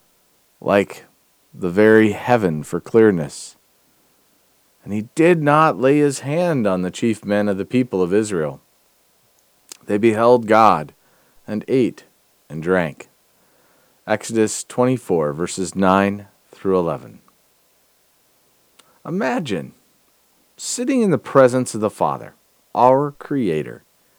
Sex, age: male, 40-59